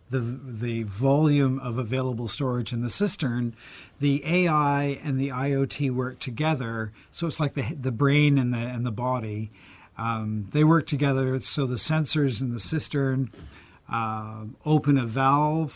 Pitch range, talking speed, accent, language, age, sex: 115-140 Hz, 155 wpm, American, English, 50-69, male